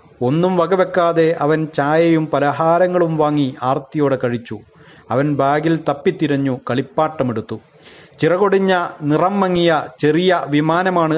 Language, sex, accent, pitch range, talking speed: Malayalam, male, native, 140-165 Hz, 90 wpm